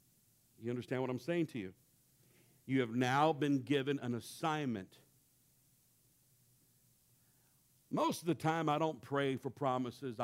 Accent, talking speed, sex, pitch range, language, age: American, 135 wpm, male, 115-135 Hz, English, 60-79